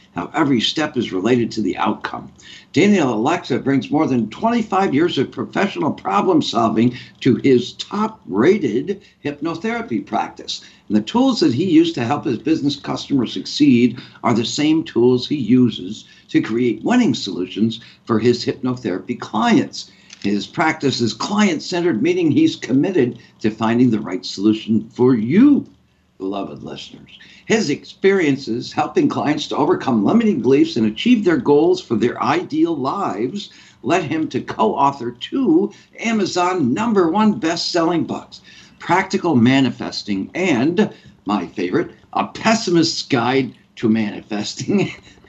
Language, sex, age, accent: English, male, 60-79, American